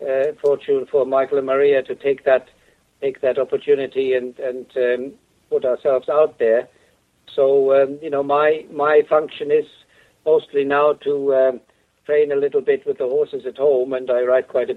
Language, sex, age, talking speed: English, male, 60-79, 185 wpm